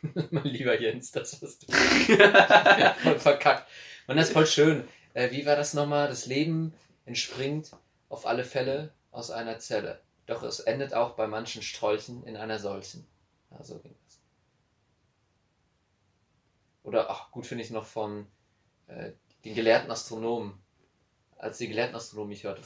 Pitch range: 110-125 Hz